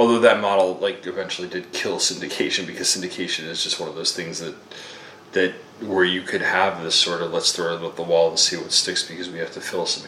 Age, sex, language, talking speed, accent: 30-49, male, English, 245 wpm, American